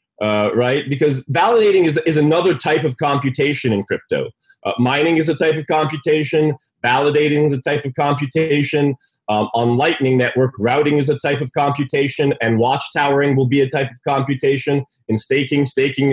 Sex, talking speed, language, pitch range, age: male, 170 wpm, English, 135-165 Hz, 30-49